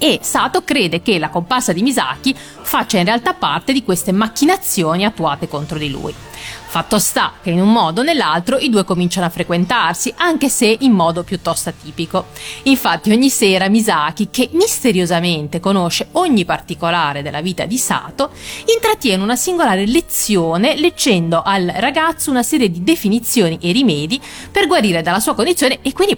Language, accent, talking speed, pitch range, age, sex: Italian, native, 165 wpm, 170-250 Hz, 30-49, female